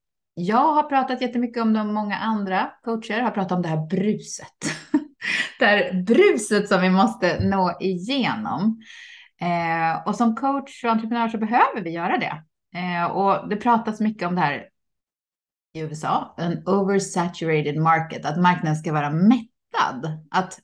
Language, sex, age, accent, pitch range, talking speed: Swedish, female, 20-39, native, 165-230 Hz, 150 wpm